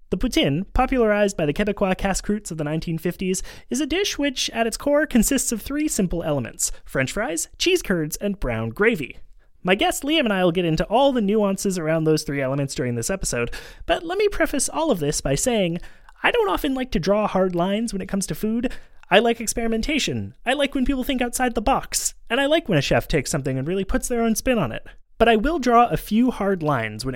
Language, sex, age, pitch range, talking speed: English, male, 30-49, 160-260 Hz, 230 wpm